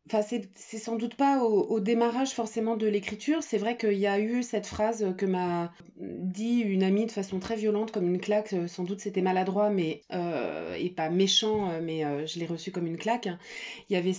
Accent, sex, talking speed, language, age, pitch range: French, female, 225 wpm, French, 30-49, 185-230 Hz